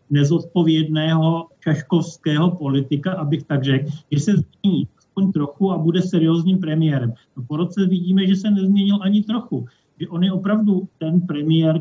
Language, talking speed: Slovak, 160 wpm